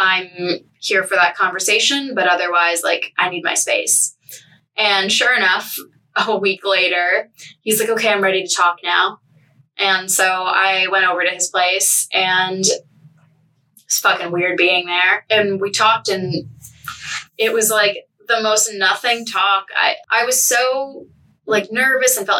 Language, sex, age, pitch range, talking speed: English, female, 10-29, 180-220 Hz, 160 wpm